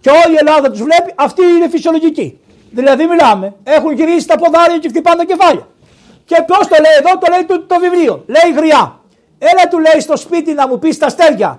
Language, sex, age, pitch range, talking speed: Greek, male, 60-79, 240-335 Hz, 215 wpm